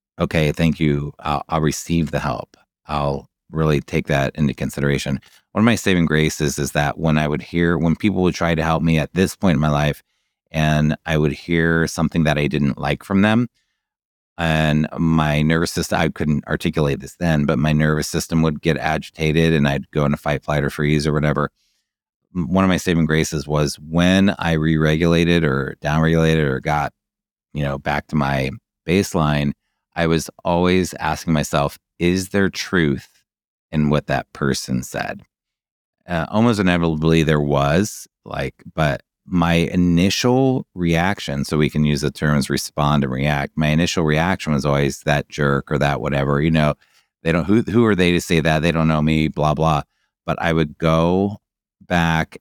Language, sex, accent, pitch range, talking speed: English, male, American, 75-85 Hz, 180 wpm